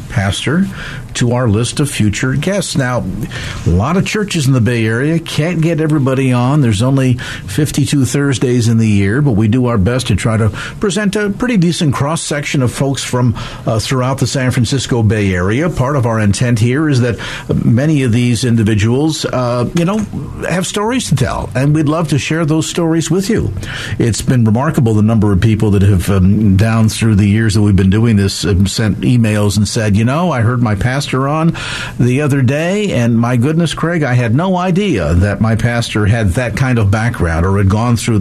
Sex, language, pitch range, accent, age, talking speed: male, English, 110-145 Hz, American, 50-69, 210 wpm